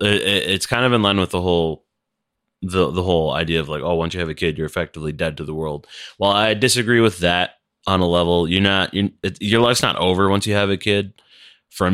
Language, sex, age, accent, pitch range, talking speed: English, male, 20-39, American, 80-95 Hz, 230 wpm